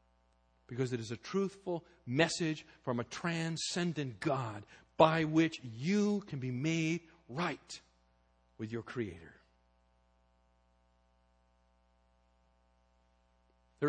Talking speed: 90 wpm